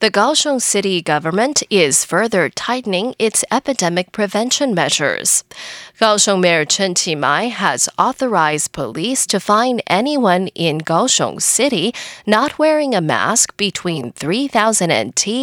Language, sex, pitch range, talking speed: English, female, 175-255 Hz, 120 wpm